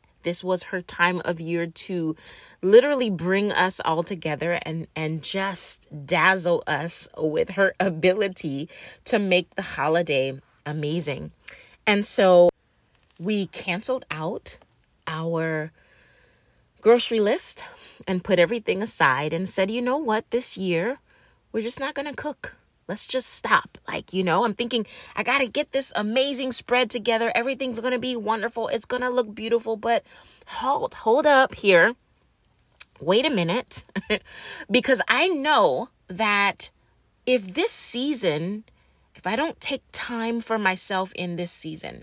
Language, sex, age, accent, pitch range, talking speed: English, female, 20-39, American, 180-250 Hz, 145 wpm